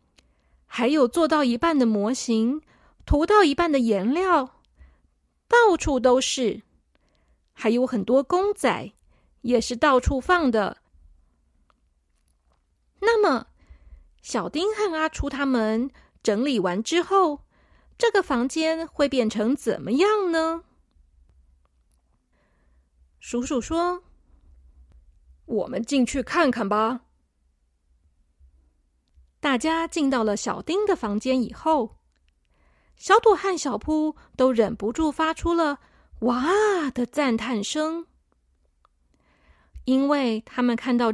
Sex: female